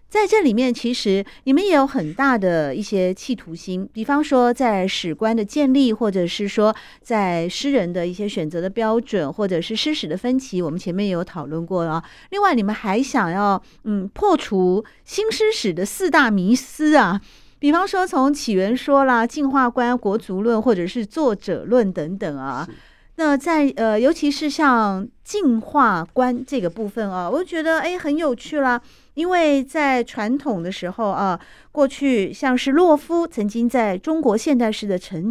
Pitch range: 190-275 Hz